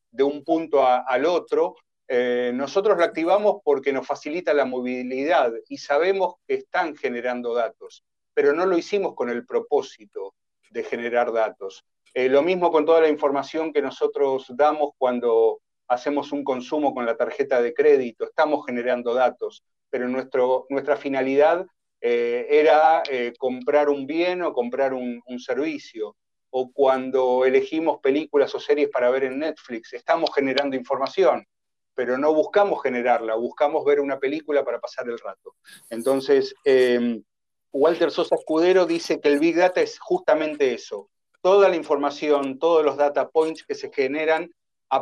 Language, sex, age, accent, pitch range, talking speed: Spanish, male, 40-59, Argentinian, 130-205 Hz, 155 wpm